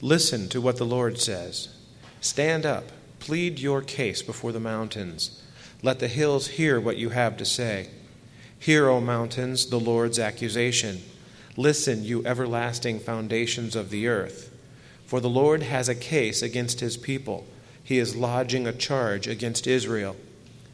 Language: English